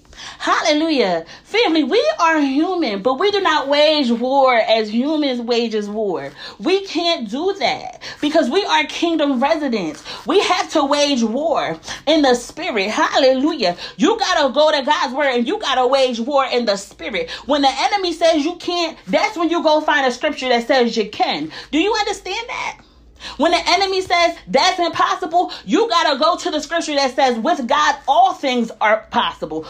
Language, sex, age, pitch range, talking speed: English, female, 30-49, 250-350 Hz, 180 wpm